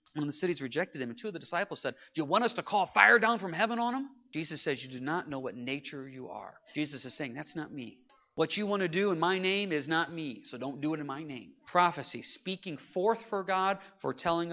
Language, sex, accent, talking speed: English, male, American, 260 wpm